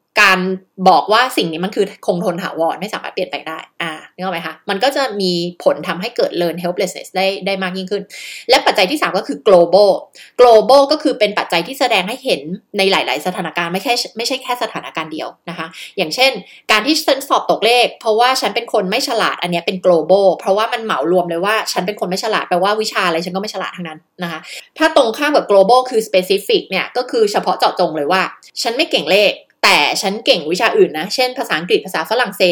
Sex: female